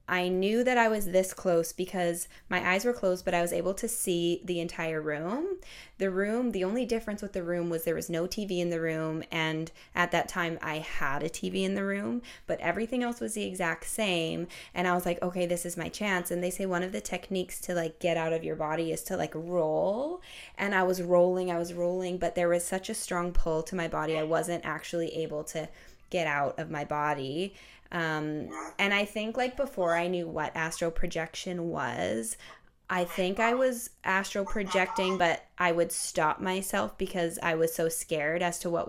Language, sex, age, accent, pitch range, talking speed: English, female, 20-39, American, 165-190 Hz, 215 wpm